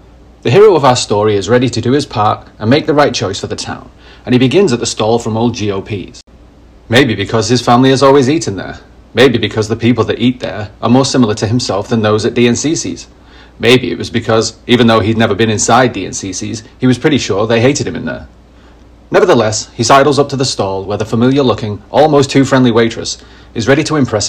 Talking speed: 215 wpm